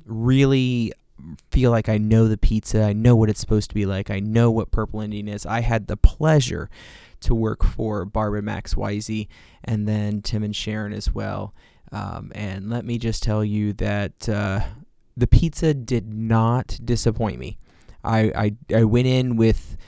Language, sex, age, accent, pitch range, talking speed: English, male, 20-39, American, 105-125 Hz, 180 wpm